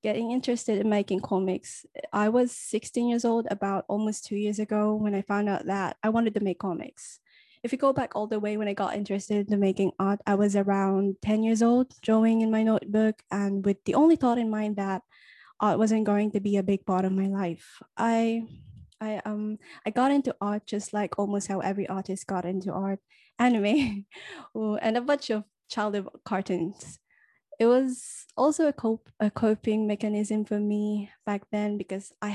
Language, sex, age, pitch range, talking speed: English, female, 10-29, 195-225 Hz, 195 wpm